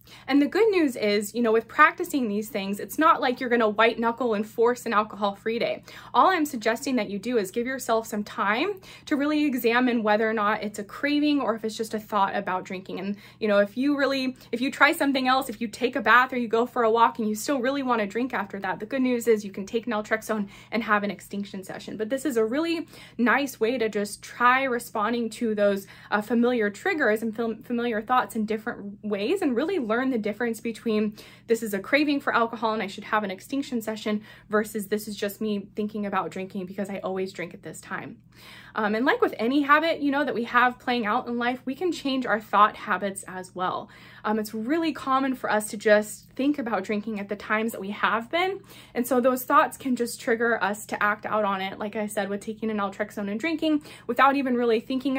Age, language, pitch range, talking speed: 20-39, English, 210-255 Hz, 240 wpm